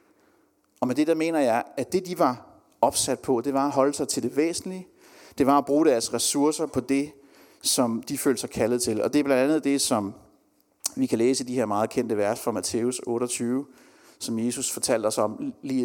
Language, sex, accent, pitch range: Danish, male, native, 120-160 Hz